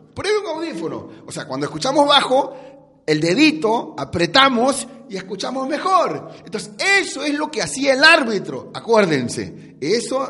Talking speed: 140 wpm